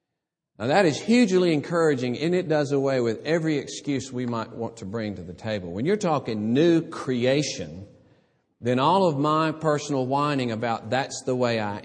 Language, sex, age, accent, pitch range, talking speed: English, male, 50-69, American, 110-165 Hz, 180 wpm